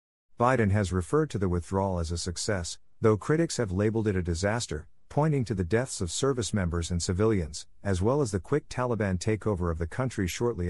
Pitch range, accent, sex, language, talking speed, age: 90-110 Hz, American, male, English, 200 wpm, 50-69